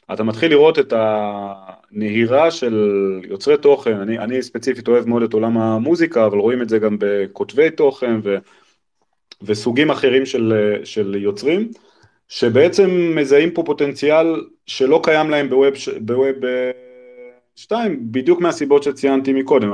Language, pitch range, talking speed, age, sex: Hebrew, 110-140 Hz, 130 wpm, 30-49, male